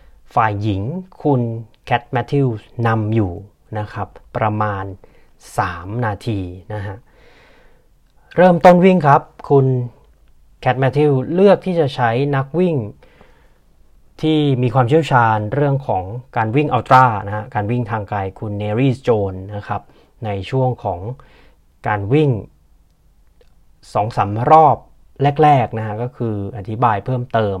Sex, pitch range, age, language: male, 105-145 Hz, 30-49, Thai